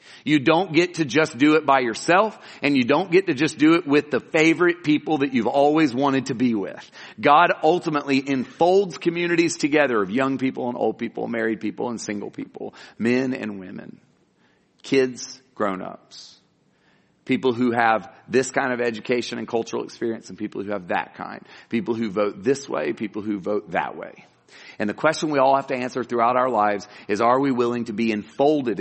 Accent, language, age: American, English, 40-59